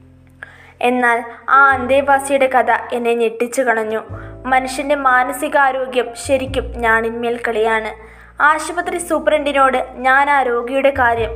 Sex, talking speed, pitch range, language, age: female, 95 wpm, 230-270 Hz, Malayalam, 20-39